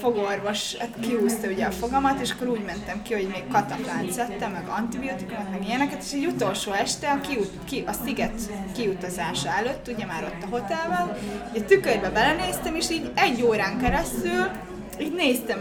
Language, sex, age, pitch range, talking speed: Hungarian, female, 20-39, 205-245 Hz, 170 wpm